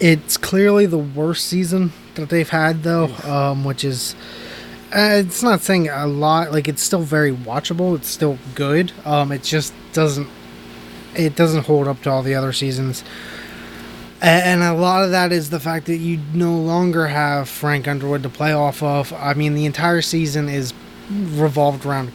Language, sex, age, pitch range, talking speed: English, male, 20-39, 130-155 Hz, 180 wpm